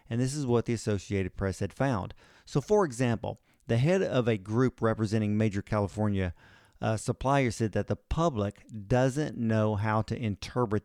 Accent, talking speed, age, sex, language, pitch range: American, 170 wpm, 40-59, male, English, 105-130 Hz